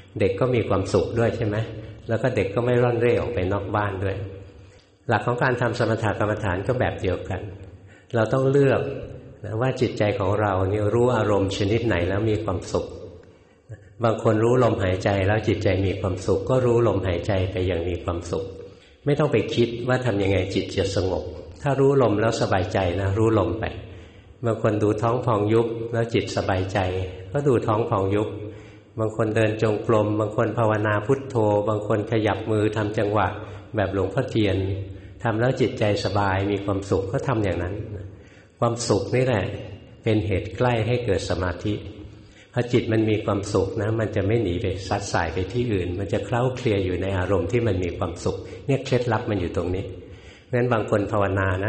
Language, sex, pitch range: Thai, male, 95-115 Hz